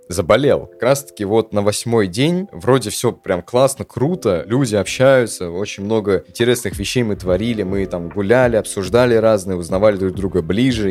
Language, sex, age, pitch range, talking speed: Russian, male, 20-39, 90-115 Hz, 165 wpm